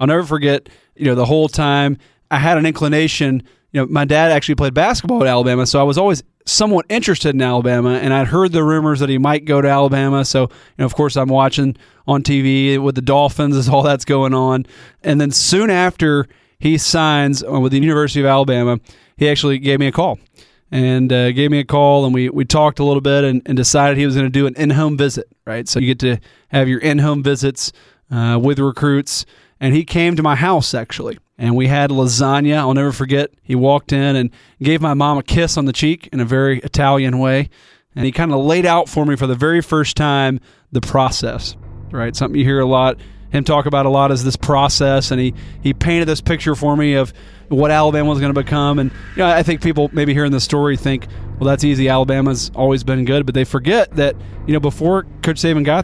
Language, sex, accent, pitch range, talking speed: English, male, American, 130-150 Hz, 230 wpm